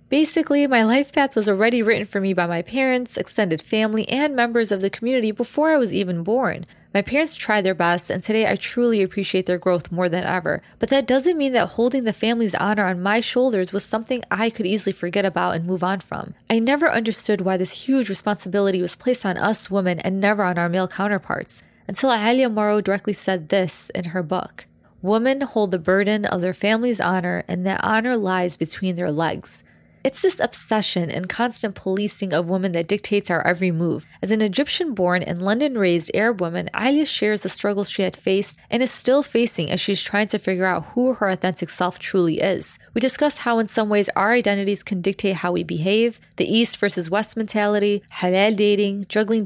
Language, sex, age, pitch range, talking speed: English, female, 20-39, 185-230 Hz, 205 wpm